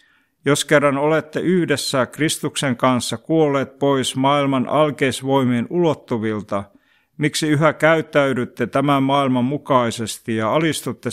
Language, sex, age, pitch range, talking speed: Finnish, male, 60-79, 125-150 Hz, 100 wpm